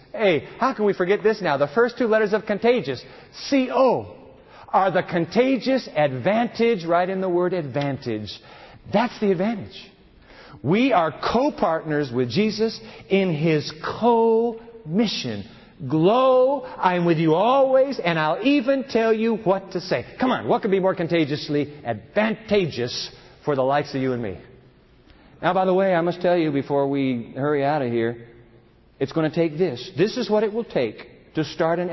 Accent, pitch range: American, 135-200 Hz